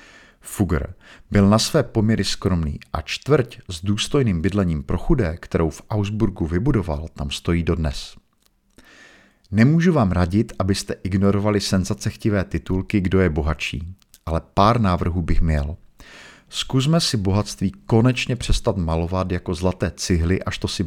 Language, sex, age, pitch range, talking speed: Czech, male, 50-69, 85-110 Hz, 135 wpm